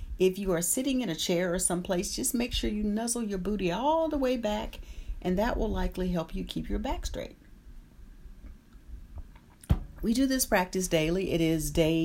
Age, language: 40-59, English